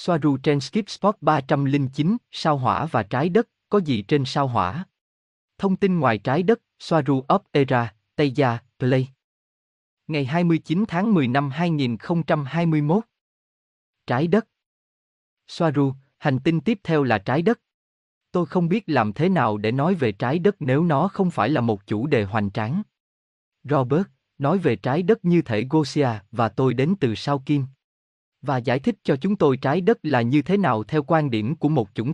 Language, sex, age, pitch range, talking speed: Vietnamese, male, 20-39, 115-165 Hz, 175 wpm